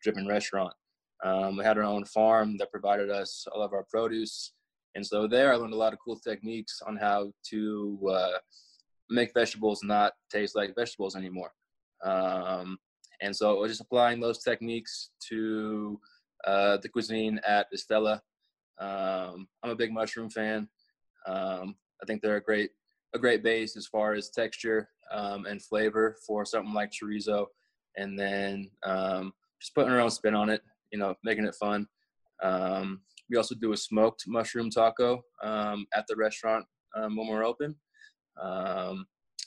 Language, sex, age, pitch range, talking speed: English, male, 20-39, 100-110 Hz, 165 wpm